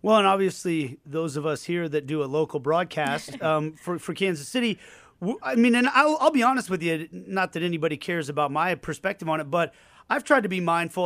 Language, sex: English, male